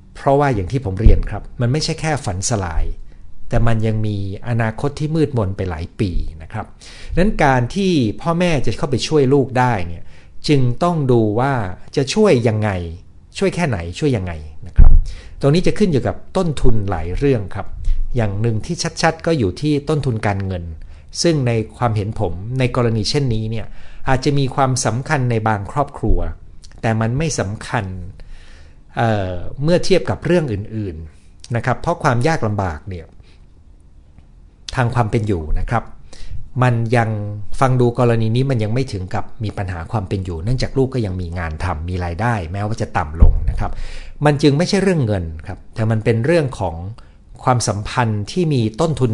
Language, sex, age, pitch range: Thai, male, 60-79, 90-130 Hz